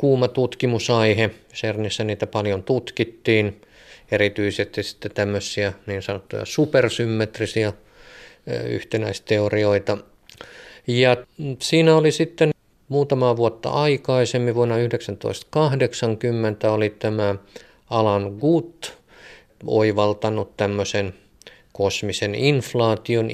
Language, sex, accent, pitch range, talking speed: Finnish, male, native, 105-115 Hz, 75 wpm